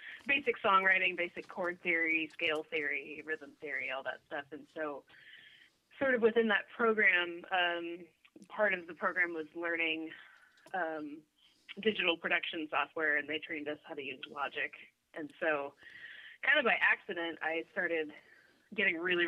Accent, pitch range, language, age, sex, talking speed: American, 160-210 Hz, English, 20-39, female, 150 wpm